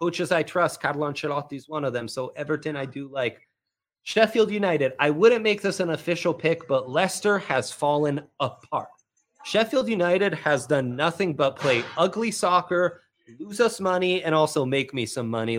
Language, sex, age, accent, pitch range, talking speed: English, male, 30-49, American, 120-170 Hz, 175 wpm